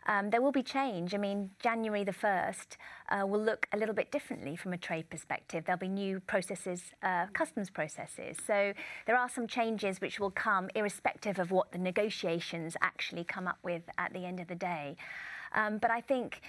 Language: Danish